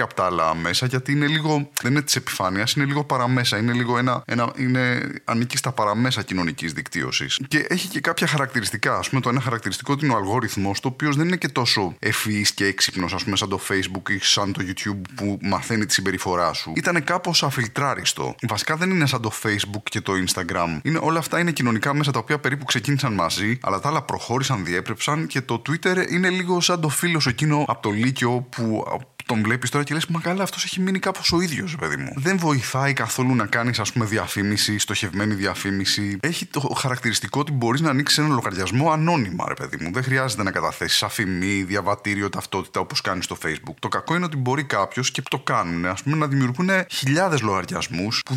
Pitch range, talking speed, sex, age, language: 105-155 Hz, 200 wpm, male, 20-39, English